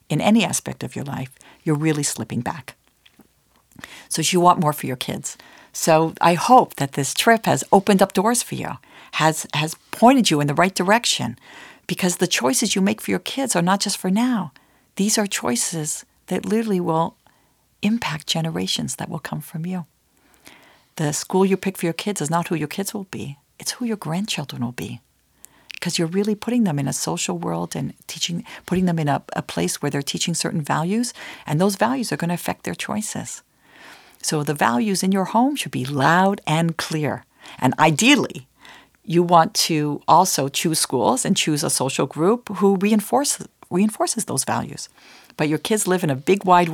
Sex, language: female, English